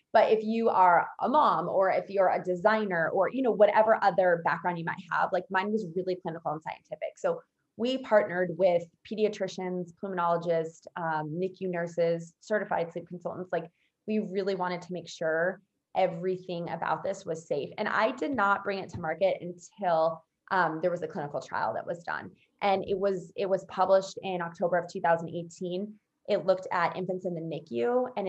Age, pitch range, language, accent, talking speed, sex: 20-39, 175-215 Hz, English, American, 185 wpm, female